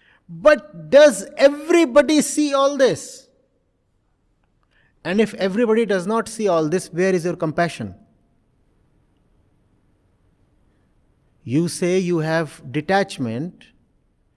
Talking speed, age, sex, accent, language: 95 wpm, 50-69, male, Indian, English